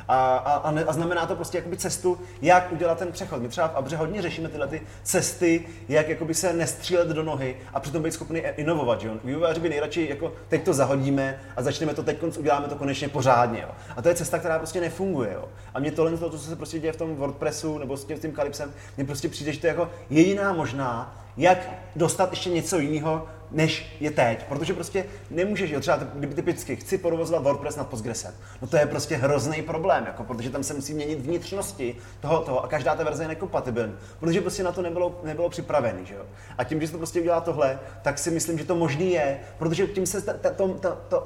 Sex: male